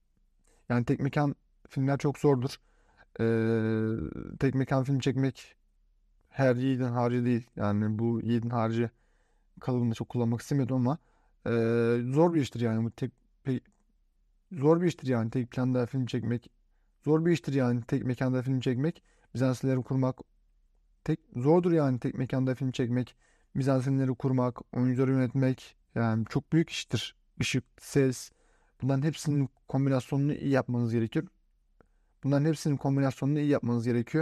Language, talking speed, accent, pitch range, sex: Turkish, 140 wpm, native, 120-140 Hz, male